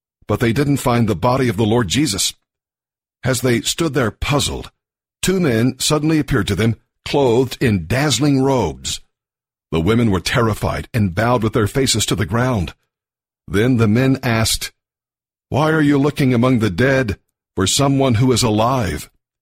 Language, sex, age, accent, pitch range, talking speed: English, male, 50-69, American, 110-135 Hz, 165 wpm